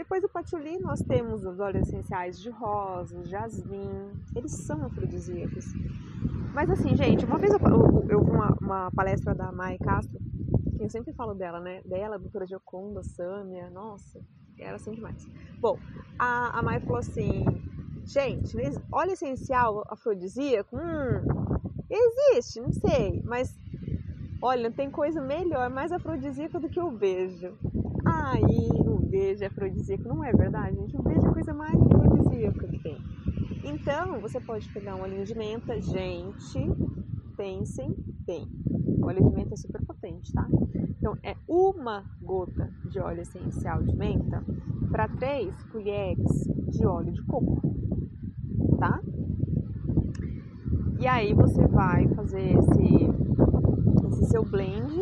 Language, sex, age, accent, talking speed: Portuguese, female, 20-39, Brazilian, 140 wpm